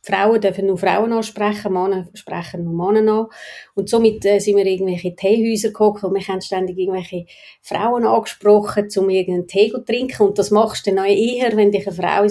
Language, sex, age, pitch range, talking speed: German, female, 30-49, 180-210 Hz, 205 wpm